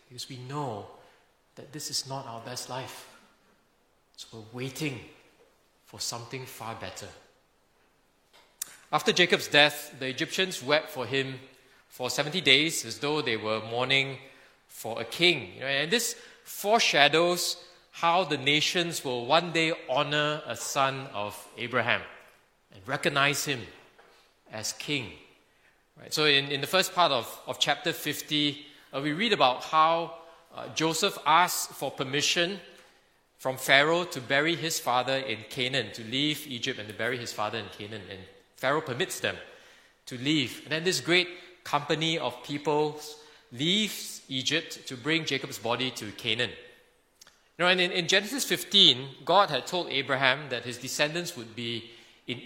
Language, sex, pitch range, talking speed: English, male, 125-165 Hz, 145 wpm